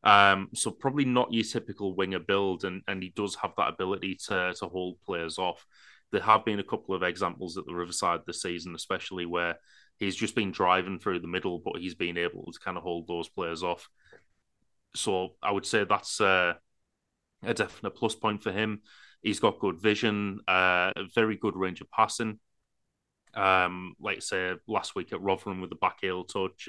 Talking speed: 195 wpm